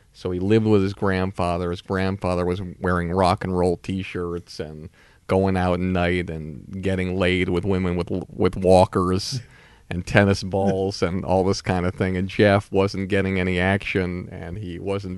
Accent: American